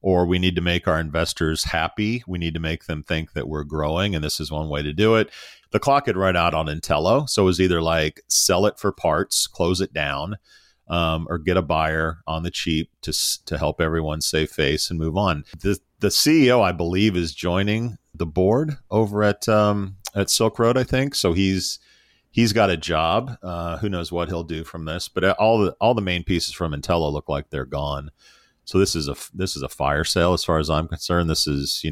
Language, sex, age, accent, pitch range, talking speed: English, male, 40-59, American, 80-100 Hz, 230 wpm